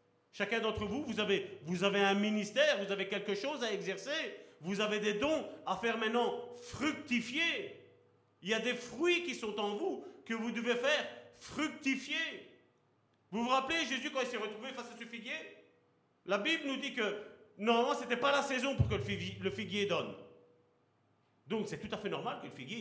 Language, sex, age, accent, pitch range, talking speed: French, male, 40-59, French, 185-260 Hz, 200 wpm